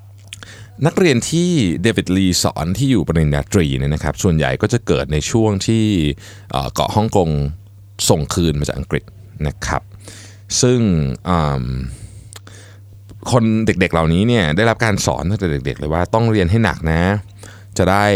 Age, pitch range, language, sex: 20-39, 85-110 Hz, Thai, male